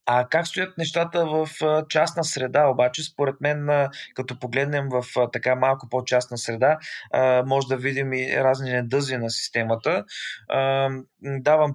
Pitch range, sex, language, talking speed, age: 125-150 Hz, male, Bulgarian, 135 wpm, 20-39